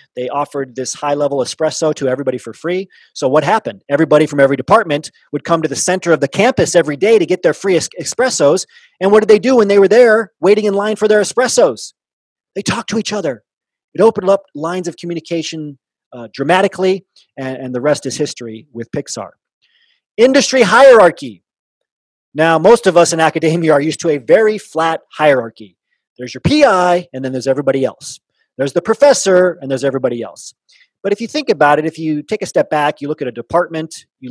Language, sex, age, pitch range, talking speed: English, male, 30-49, 135-185 Hz, 200 wpm